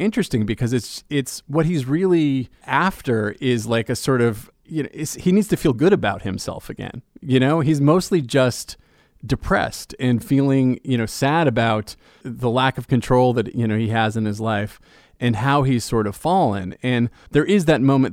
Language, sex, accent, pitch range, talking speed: English, male, American, 110-140 Hz, 190 wpm